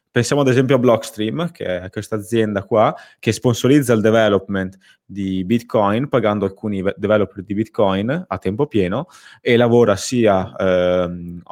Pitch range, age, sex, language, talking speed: 95-120 Hz, 20-39, male, Italian, 145 wpm